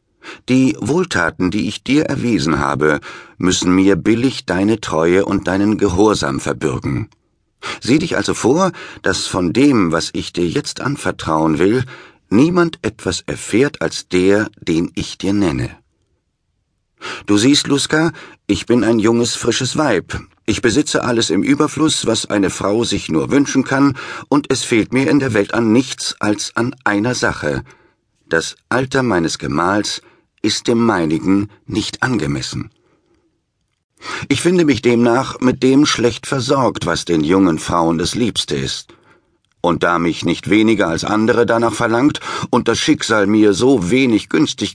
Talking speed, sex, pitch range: 150 wpm, male, 95-130 Hz